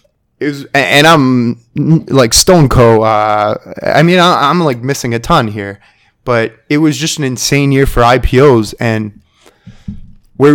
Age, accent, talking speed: 20-39, American, 155 wpm